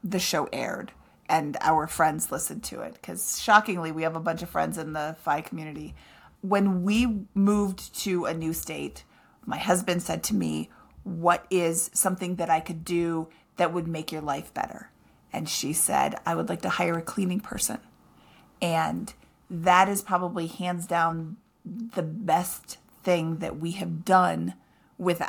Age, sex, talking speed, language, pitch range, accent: 30-49, female, 170 wpm, English, 170-240 Hz, American